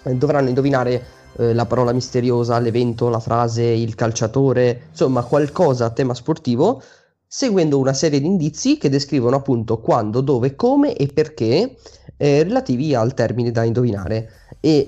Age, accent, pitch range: 20-39, native, 120-175 Hz